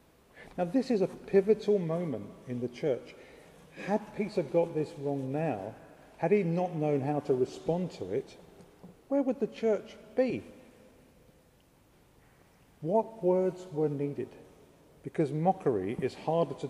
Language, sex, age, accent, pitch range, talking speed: English, male, 50-69, British, 135-195 Hz, 135 wpm